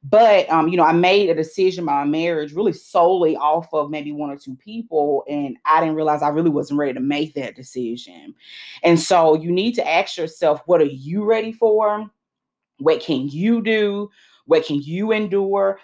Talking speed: 195 wpm